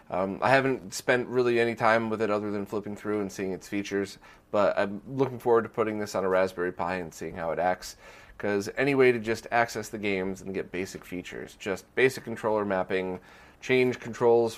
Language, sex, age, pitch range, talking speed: English, male, 30-49, 100-130 Hz, 210 wpm